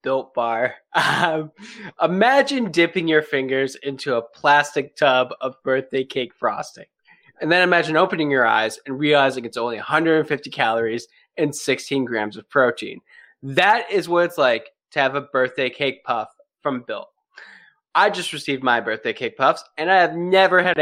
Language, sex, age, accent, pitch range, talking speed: English, male, 20-39, American, 130-175 Hz, 165 wpm